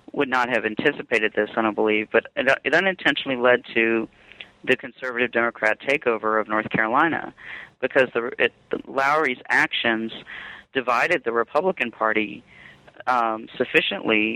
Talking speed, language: 120 wpm, English